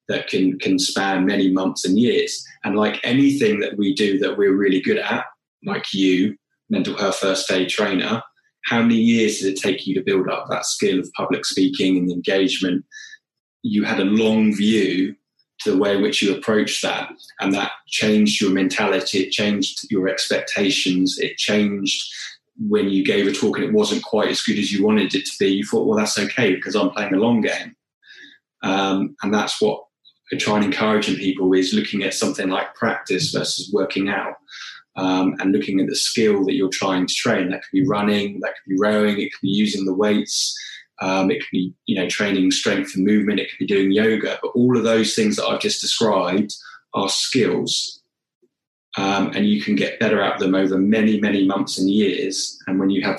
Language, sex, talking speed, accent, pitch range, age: English, male, 205 wpm, British, 95-105 Hz, 20-39